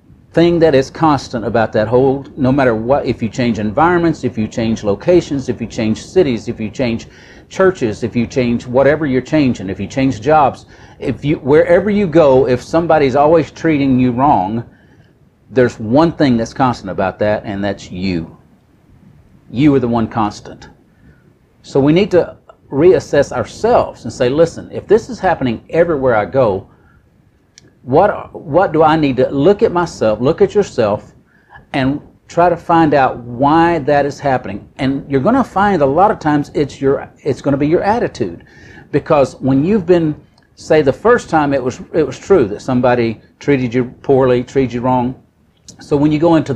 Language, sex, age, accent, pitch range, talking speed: English, male, 50-69, American, 120-160 Hz, 185 wpm